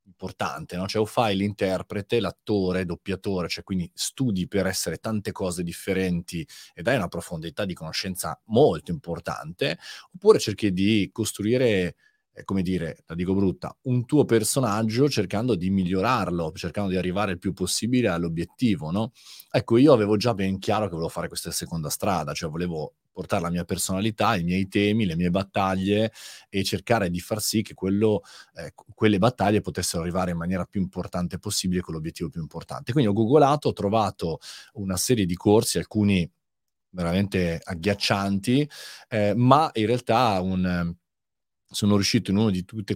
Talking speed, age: 160 wpm, 30-49